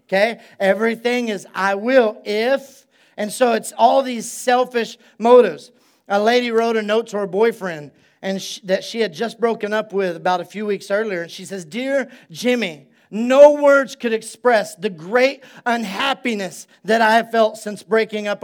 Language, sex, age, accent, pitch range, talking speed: English, male, 40-59, American, 215-265 Hz, 175 wpm